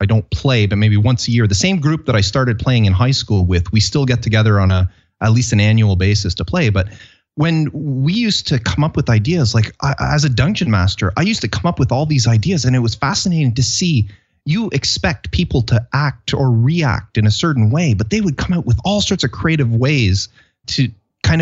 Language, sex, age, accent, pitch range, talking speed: English, male, 30-49, American, 105-140 Hz, 240 wpm